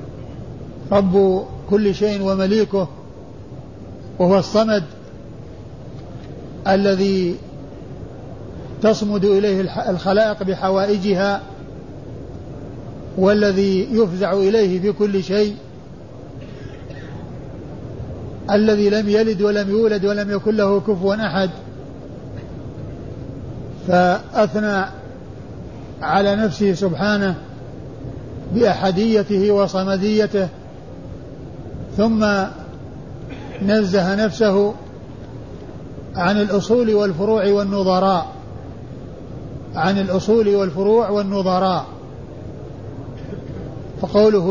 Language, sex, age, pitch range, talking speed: Arabic, male, 50-69, 185-210 Hz, 60 wpm